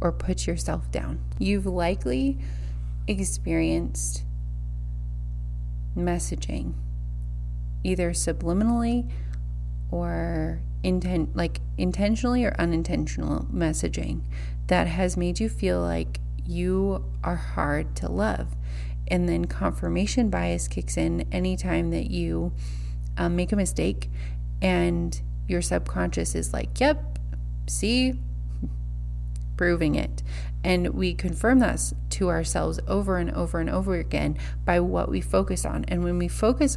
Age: 30-49